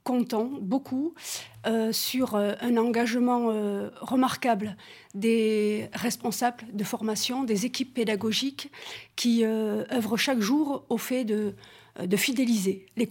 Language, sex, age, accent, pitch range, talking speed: French, female, 40-59, French, 215-265 Hz, 120 wpm